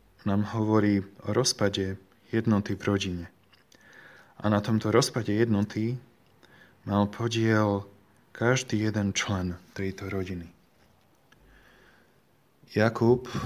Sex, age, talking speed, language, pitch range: male, 20-39, 90 wpm, Slovak, 100-115 Hz